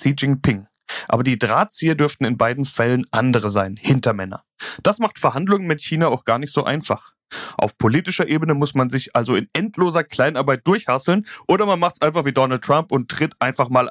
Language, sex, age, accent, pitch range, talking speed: German, male, 30-49, German, 120-165 Hz, 190 wpm